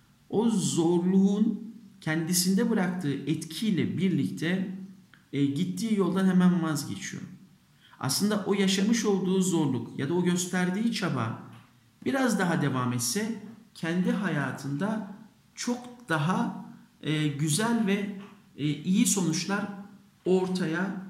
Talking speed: 95 wpm